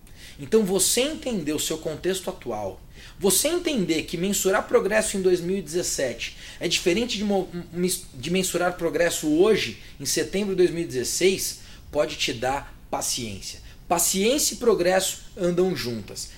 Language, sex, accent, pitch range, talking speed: Portuguese, male, Brazilian, 140-215 Hz, 125 wpm